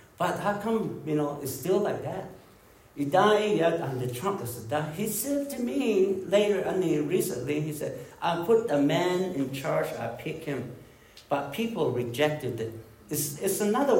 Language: English